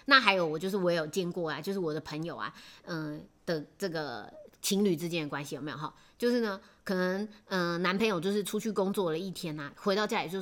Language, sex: Chinese, female